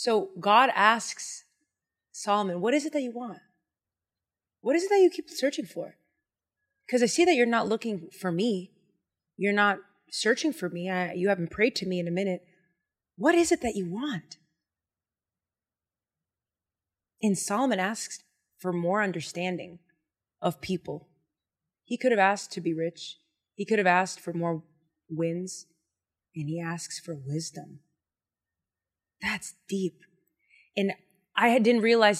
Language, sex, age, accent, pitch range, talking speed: English, female, 20-39, American, 170-235 Hz, 145 wpm